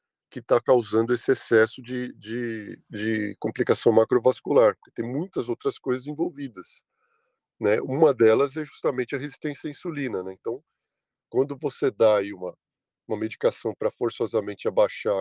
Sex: male